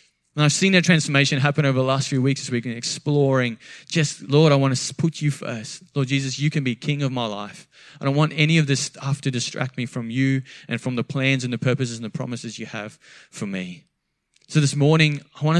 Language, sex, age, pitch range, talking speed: English, male, 20-39, 125-150 Hz, 240 wpm